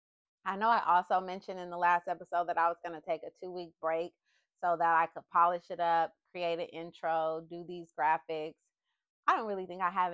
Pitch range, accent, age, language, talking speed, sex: 170-215 Hz, American, 30-49, English, 225 wpm, female